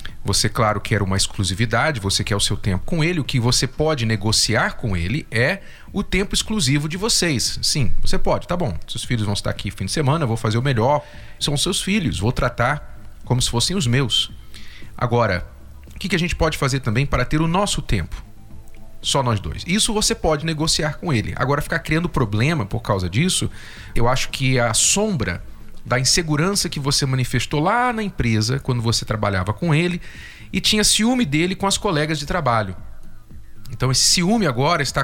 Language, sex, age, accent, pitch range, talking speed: Portuguese, male, 40-59, Brazilian, 110-160 Hz, 195 wpm